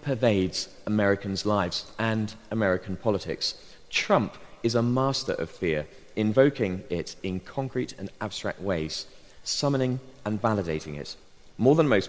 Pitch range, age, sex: 95-130 Hz, 40-59, male